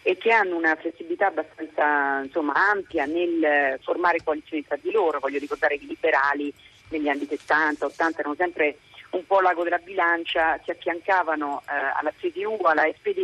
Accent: native